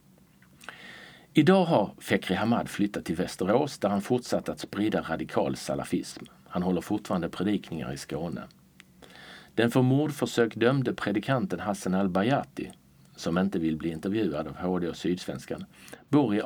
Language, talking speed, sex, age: Swedish, 140 wpm, male, 50-69